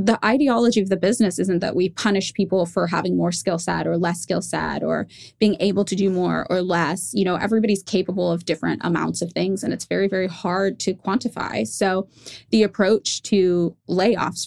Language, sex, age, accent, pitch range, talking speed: English, female, 20-39, American, 180-215 Hz, 200 wpm